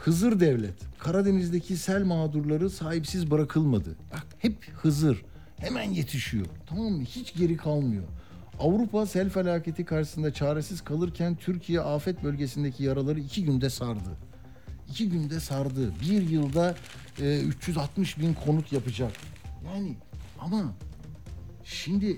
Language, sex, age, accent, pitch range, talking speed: Turkish, male, 60-79, native, 120-175 Hz, 115 wpm